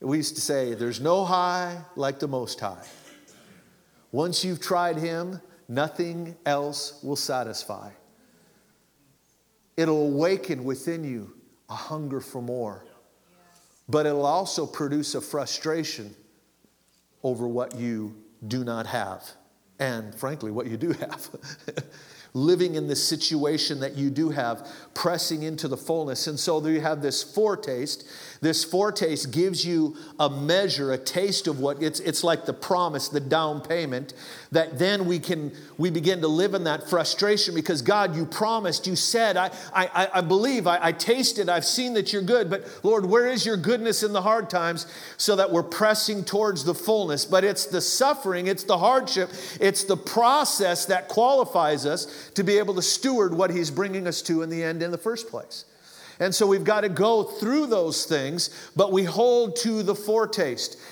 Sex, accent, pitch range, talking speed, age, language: male, American, 150-195 Hz, 170 wpm, 50-69, English